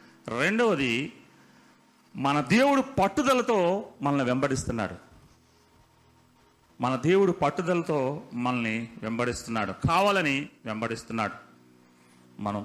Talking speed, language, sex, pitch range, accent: 65 wpm, Telugu, male, 95-150 Hz, native